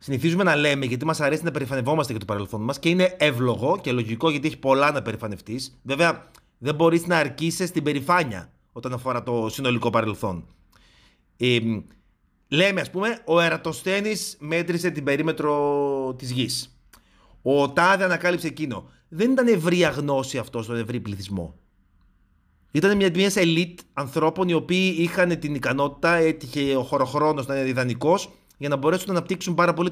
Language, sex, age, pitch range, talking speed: Greek, male, 30-49, 125-170 Hz, 155 wpm